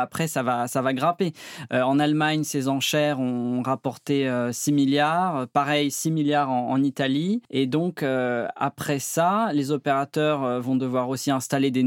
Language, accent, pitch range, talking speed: French, French, 130-155 Hz, 165 wpm